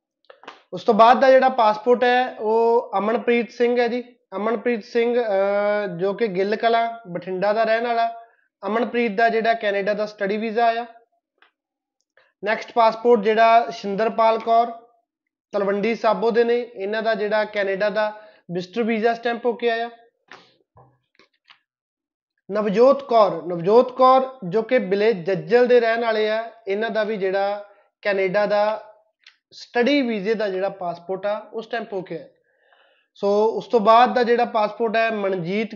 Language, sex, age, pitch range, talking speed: Punjabi, male, 20-39, 205-235 Hz, 135 wpm